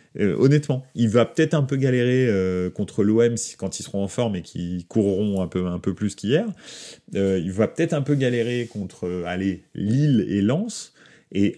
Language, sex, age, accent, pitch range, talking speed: French, male, 30-49, French, 95-130 Hz, 200 wpm